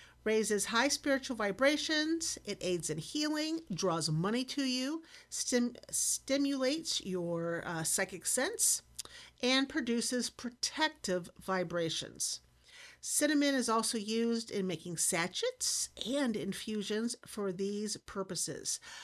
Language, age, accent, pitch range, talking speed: English, 50-69, American, 180-250 Hz, 105 wpm